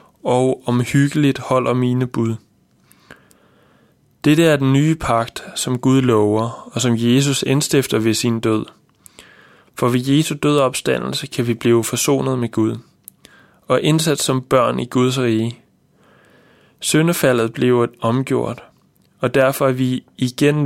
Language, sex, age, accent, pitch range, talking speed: Danish, male, 20-39, native, 115-140 Hz, 135 wpm